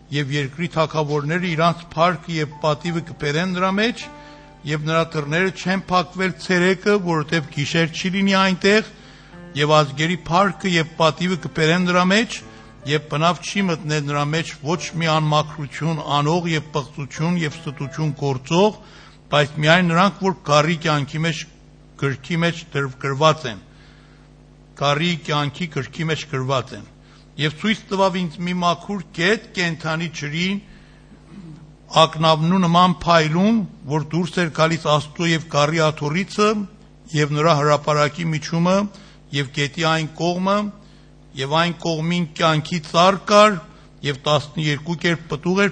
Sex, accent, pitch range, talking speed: male, Turkish, 150-180 Hz, 110 wpm